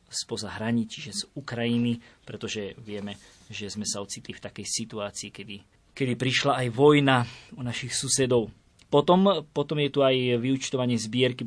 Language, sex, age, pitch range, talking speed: Slovak, male, 20-39, 115-140 Hz, 155 wpm